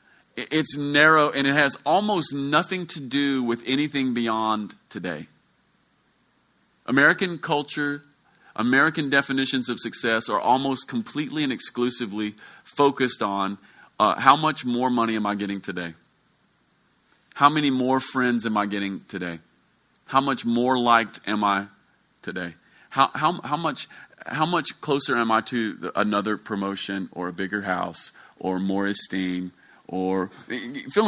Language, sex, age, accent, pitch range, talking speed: English, male, 30-49, American, 100-135 Hz, 135 wpm